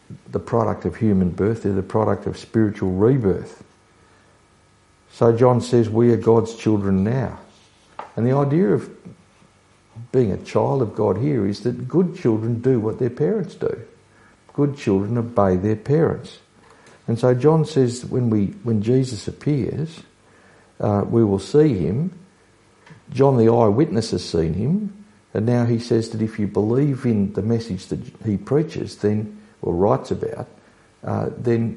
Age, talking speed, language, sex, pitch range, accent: 60-79, 155 wpm, English, male, 105-130 Hz, Australian